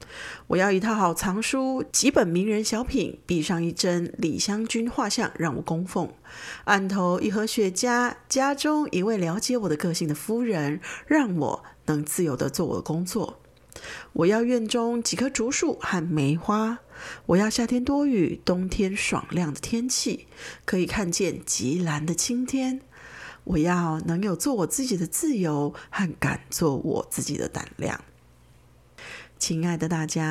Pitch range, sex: 165-245 Hz, female